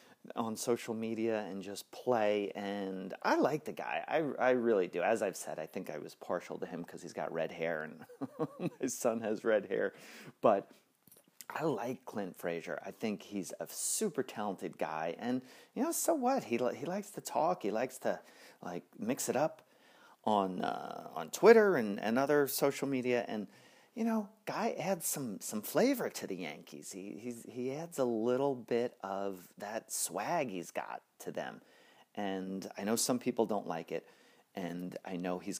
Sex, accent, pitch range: male, American, 95-130 Hz